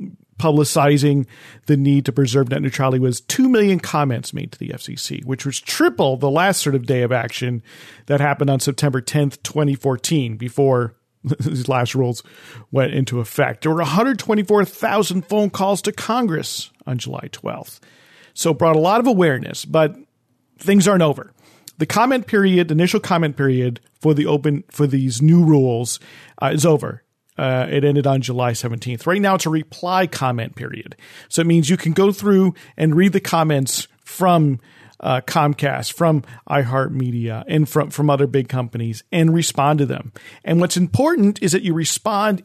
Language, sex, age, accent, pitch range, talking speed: English, male, 40-59, American, 130-170 Hz, 170 wpm